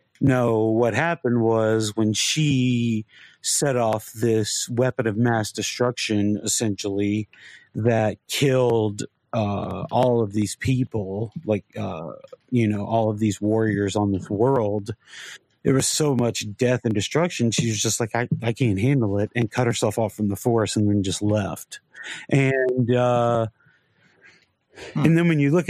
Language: English